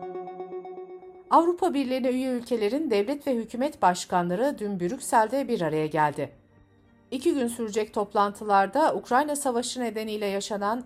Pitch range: 170-260 Hz